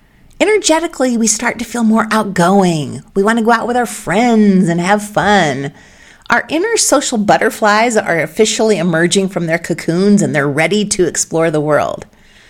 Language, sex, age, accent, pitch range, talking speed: English, female, 40-59, American, 170-245 Hz, 170 wpm